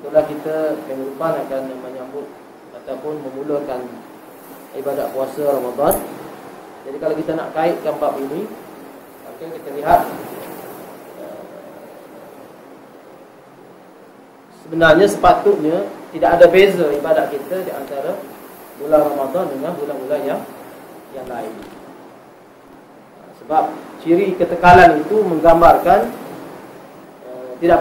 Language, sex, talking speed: Malay, male, 90 wpm